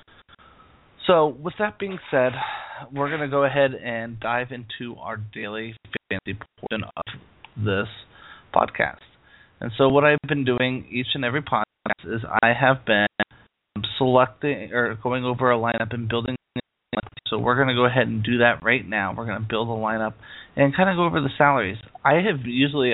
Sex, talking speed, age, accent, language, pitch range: male, 180 wpm, 30-49, American, English, 110-130 Hz